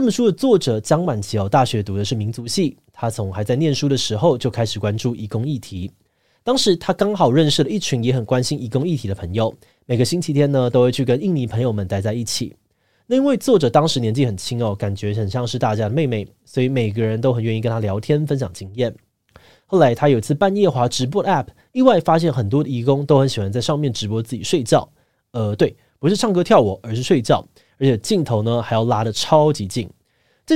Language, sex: Chinese, male